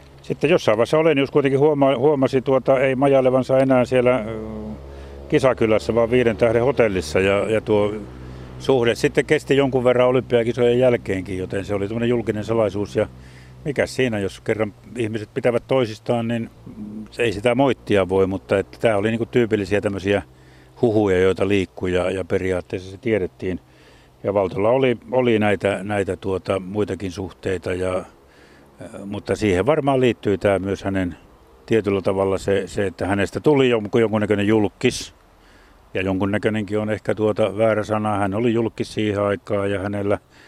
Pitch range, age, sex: 95-115 Hz, 60-79, male